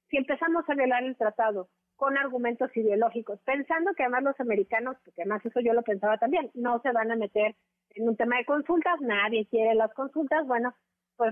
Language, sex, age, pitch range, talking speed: Spanish, female, 40-59, 225-275 Hz, 195 wpm